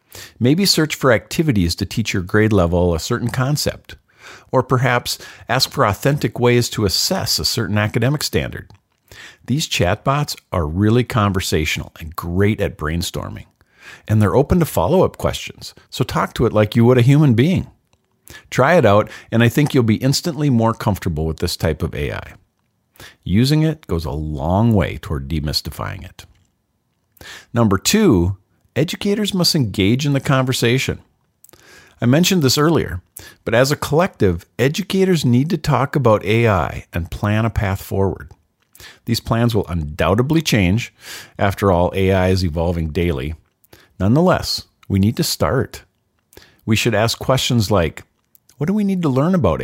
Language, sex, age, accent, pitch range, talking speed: English, male, 50-69, American, 95-130 Hz, 155 wpm